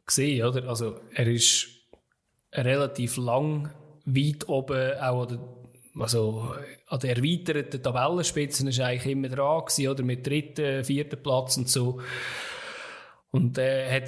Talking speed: 140 wpm